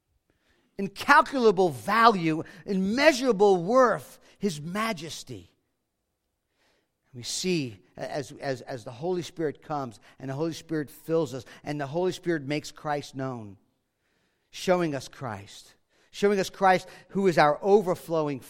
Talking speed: 125 wpm